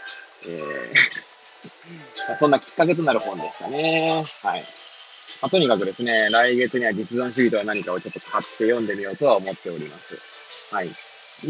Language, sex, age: Japanese, male, 20-39